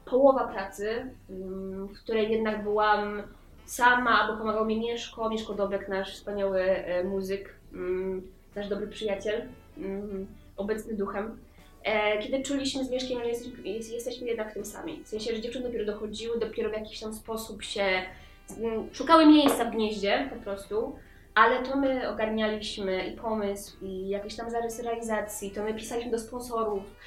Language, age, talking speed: English, 20-39, 140 wpm